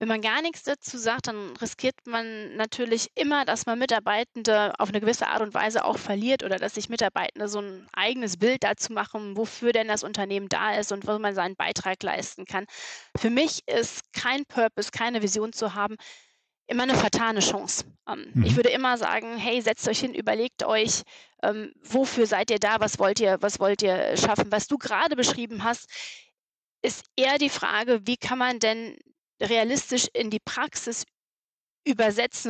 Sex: female